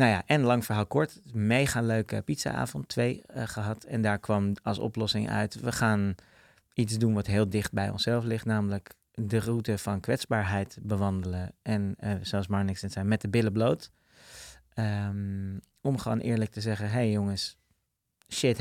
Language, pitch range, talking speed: Dutch, 100-115 Hz, 175 wpm